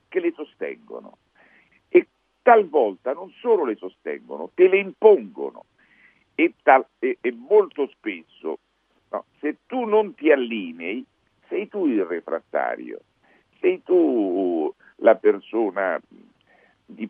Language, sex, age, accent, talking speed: Italian, male, 50-69, native, 115 wpm